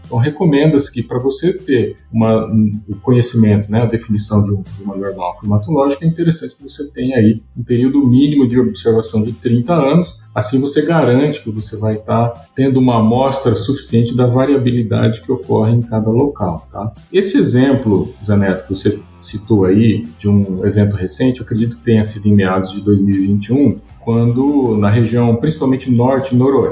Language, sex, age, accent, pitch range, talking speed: Portuguese, male, 40-59, Brazilian, 105-135 Hz, 160 wpm